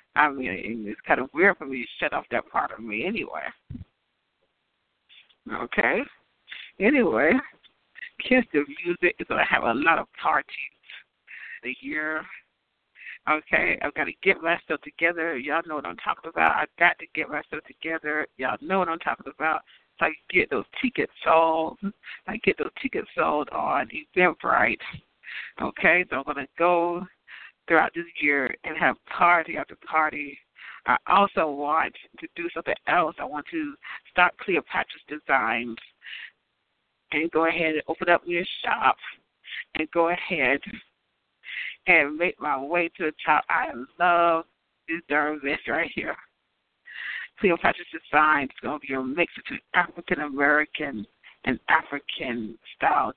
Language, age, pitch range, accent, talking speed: English, 60-79, 145-175 Hz, American, 150 wpm